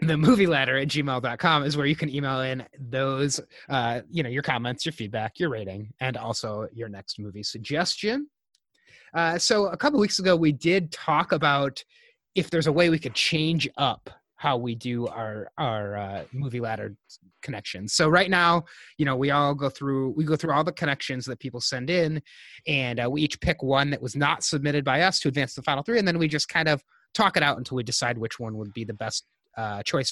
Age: 30-49